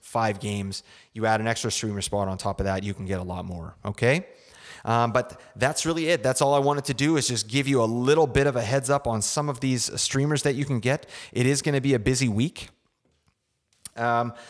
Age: 30-49